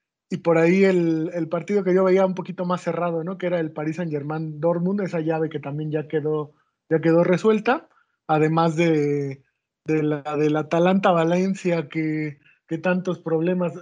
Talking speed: 180 wpm